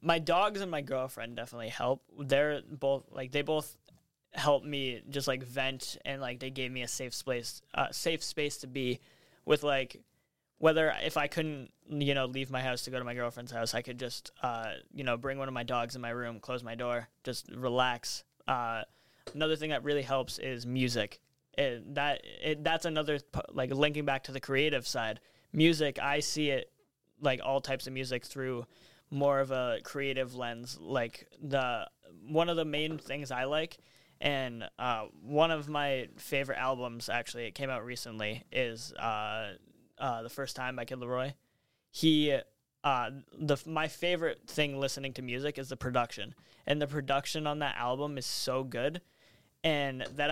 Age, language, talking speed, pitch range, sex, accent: 20-39, English, 185 wpm, 125-145 Hz, male, American